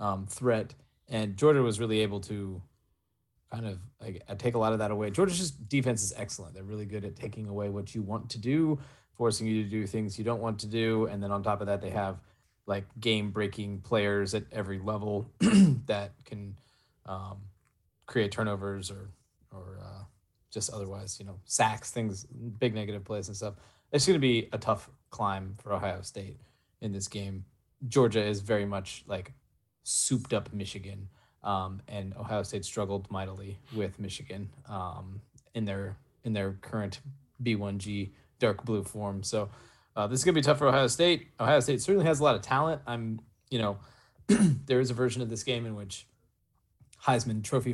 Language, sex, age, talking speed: English, male, 20-39, 180 wpm